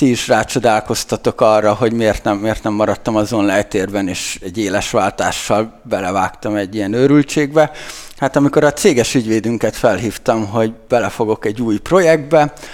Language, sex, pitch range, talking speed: Hungarian, male, 110-145 Hz, 145 wpm